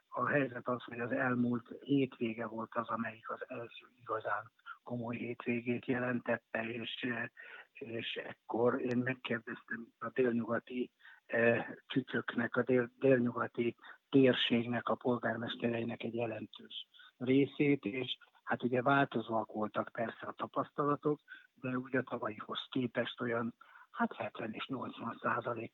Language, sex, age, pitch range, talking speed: Hungarian, male, 60-79, 115-130 Hz, 125 wpm